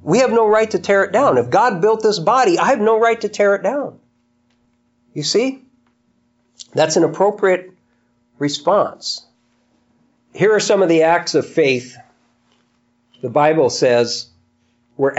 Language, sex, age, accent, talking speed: English, male, 50-69, American, 155 wpm